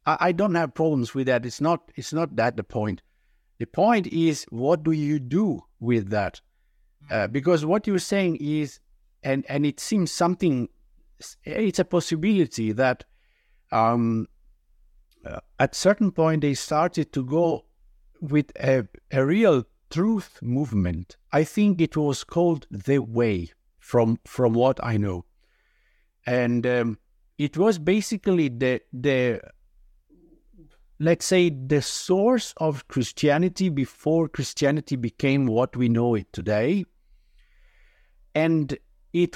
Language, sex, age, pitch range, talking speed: English, male, 60-79, 125-175 Hz, 130 wpm